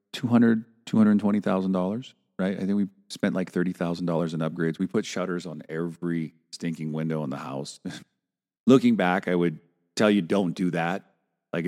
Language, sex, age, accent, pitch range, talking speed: English, male, 40-59, American, 80-105 Hz, 160 wpm